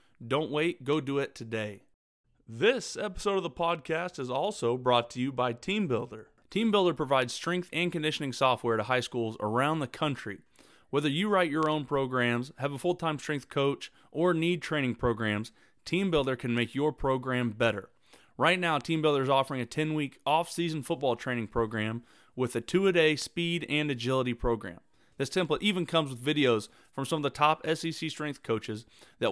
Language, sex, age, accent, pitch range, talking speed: English, male, 30-49, American, 120-165 Hz, 180 wpm